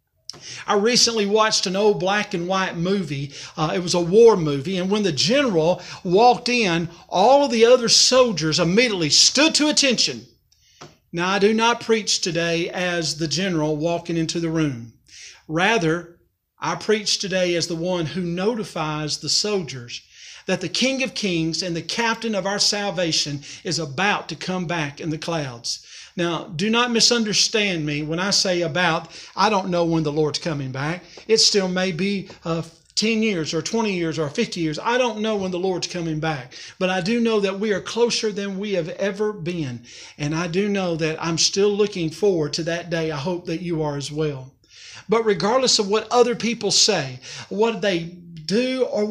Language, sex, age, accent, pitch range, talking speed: English, male, 50-69, American, 165-220 Hz, 190 wpm